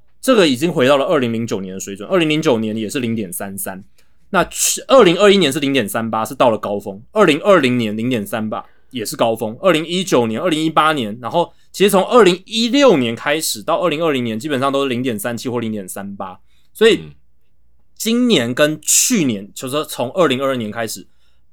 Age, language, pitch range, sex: 20-39, Chinese, 110-175 Hz, male